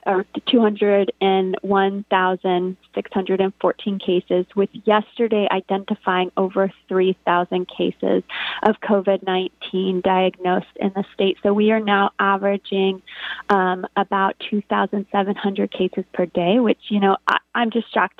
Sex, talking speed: female, 110 wpm